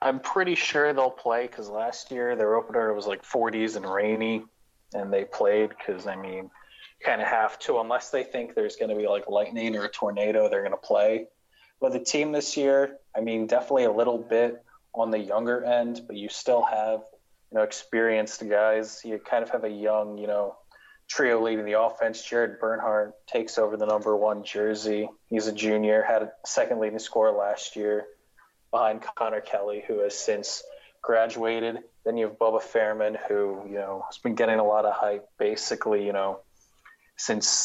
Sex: male